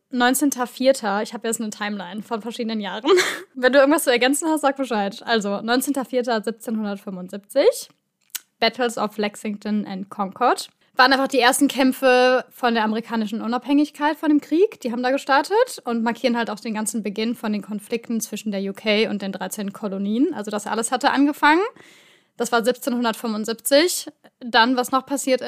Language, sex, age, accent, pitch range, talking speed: German, female, 10-29, German, 215-255 Hz, 165 wpm